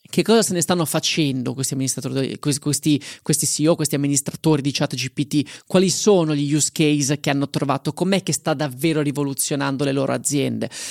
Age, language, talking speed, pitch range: 20-39, Italian, 170 wpm, 145-170 Hz